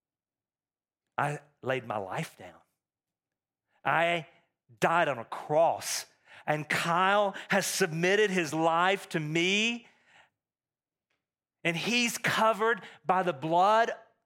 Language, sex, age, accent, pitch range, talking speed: English, male, 40-59, American, 160-220 Hz, 100 wpm